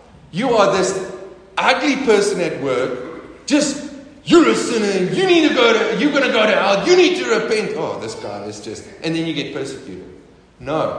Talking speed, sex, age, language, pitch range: 200 wpm, male, 40-59, English, 165-215 Hz